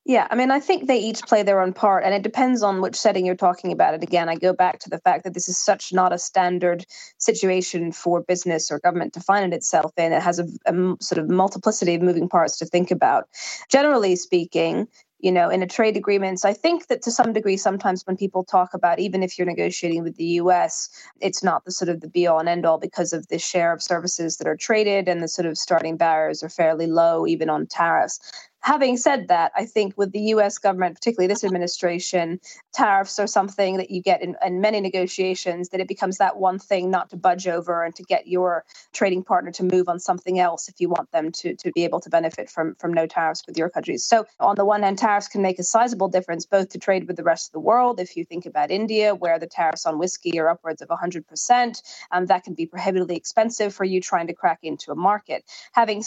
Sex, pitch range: female, 170-200 Hz